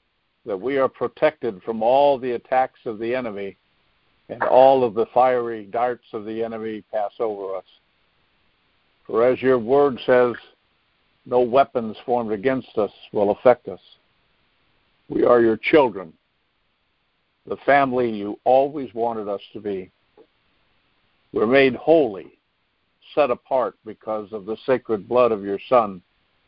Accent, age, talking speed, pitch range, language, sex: American, 60-79, 140 wpm, 105-130 Hz, English, male